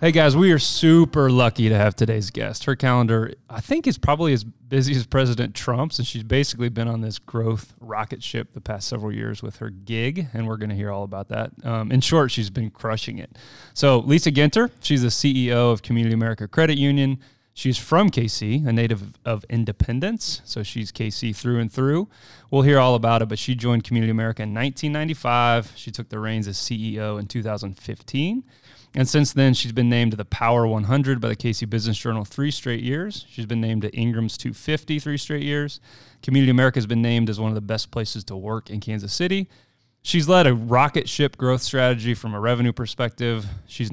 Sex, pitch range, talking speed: male, 110-135 Hz, 205 wpm